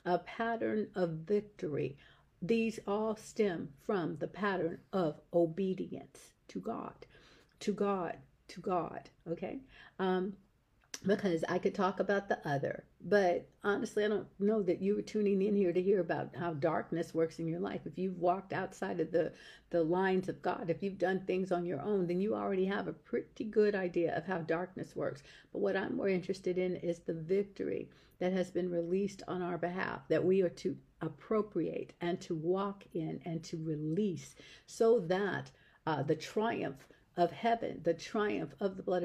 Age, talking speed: 50-69, 180 wpm